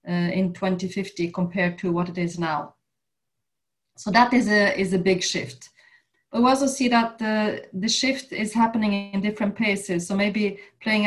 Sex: female